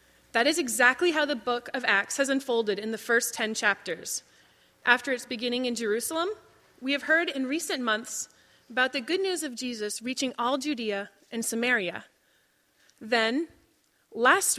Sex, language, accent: female, English, American